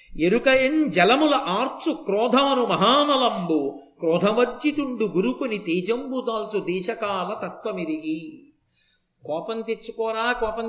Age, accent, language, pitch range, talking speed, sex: 50-69, native, Telugu, 195-270 Hz, 85 wpm, male